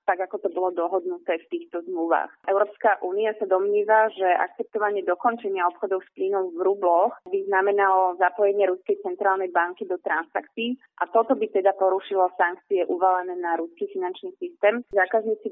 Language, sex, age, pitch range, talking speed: Slovak, female, 30-49, 185-235 Hz, 155 wpm